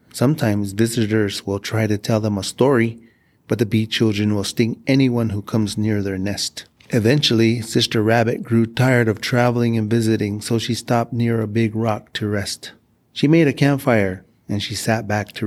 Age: 30-49